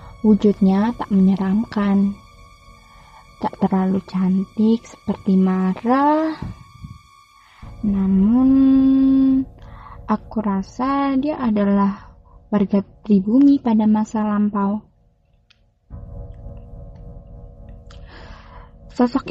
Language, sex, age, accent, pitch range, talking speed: Indonesian, female, 20-39, native, 185-230 Hz, 60 wpm